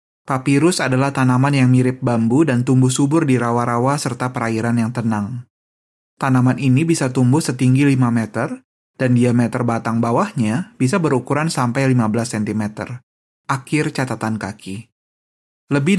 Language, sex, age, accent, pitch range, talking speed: Indonesian, male, 20-39, native, 115-140 Hz, 130 wpm